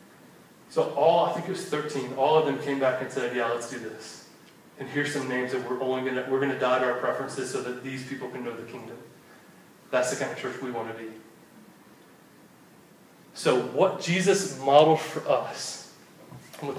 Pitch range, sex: 140-190 Hz, male